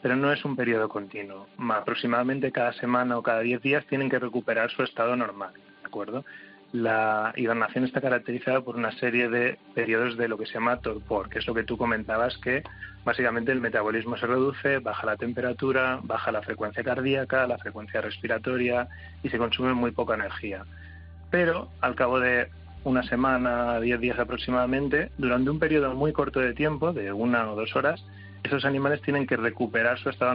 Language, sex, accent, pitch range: Spanish, male, Spanish, 110-130 Hz